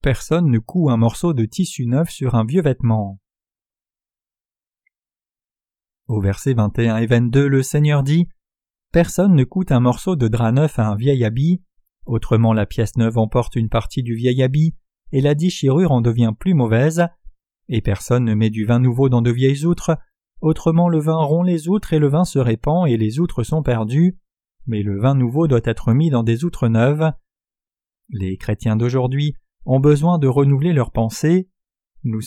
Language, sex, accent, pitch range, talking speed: French, male, French, 115-160 Hz, 180 wpm